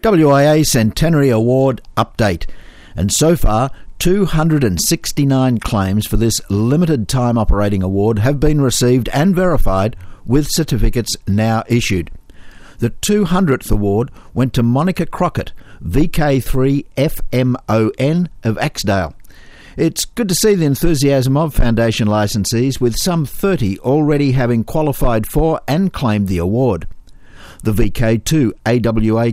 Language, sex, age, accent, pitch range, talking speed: English, male, 60-79, Australian, 110-145 Hz, 115 wpm